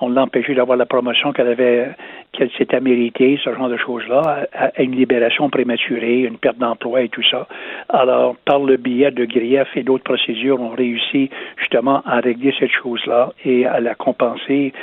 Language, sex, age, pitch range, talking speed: French, male, 60-79, 120-135 Hz, 180 wpm